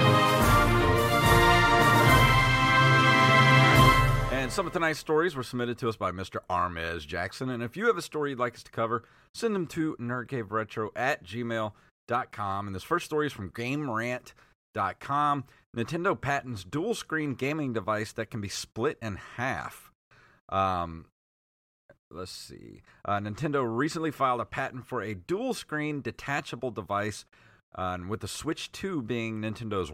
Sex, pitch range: male, 105-135 Hz